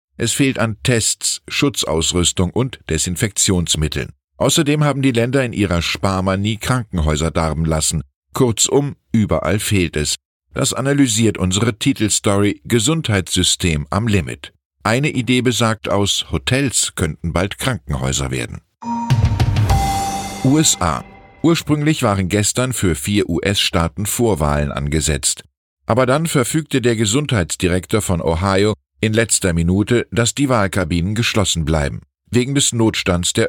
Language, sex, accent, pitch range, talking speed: German, male, German, 80-120 Hz, 120 wpm